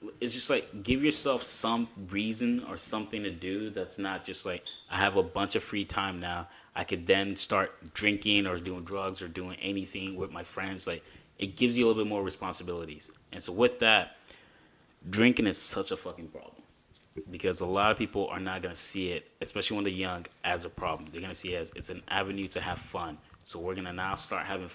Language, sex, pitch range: English, male, 90-105 Hz